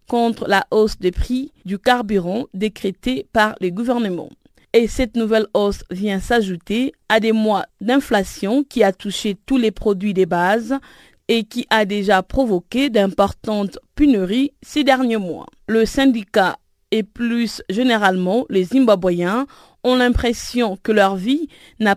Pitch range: 200-255 Hz